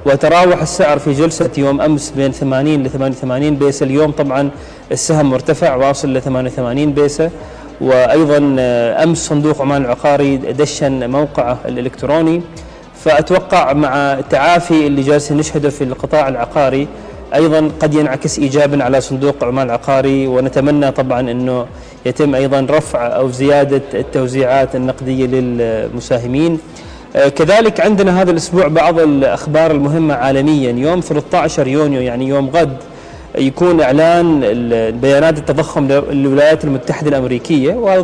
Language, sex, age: Arabic, male, 30-49